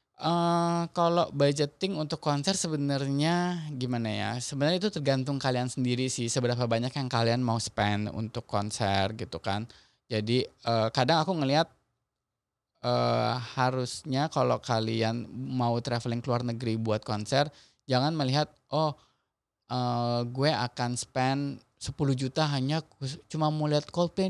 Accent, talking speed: native, 135 wpm